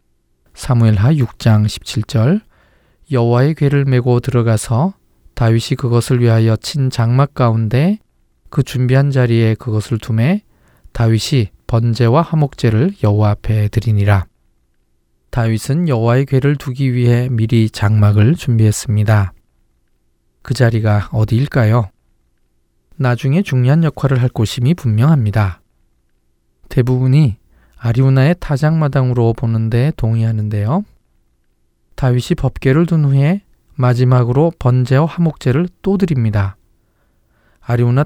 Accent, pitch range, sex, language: native, 110-135 Hz, male, Korean